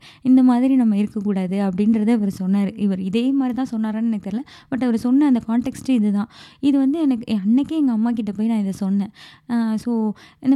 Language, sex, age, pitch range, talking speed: Tamil, female, 20-39, 205-245 Hz, 190 wpm